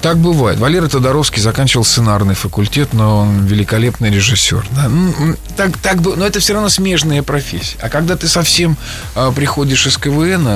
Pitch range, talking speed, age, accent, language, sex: 105-135 Hz, 165 wpm, 20-39, native, Russian, male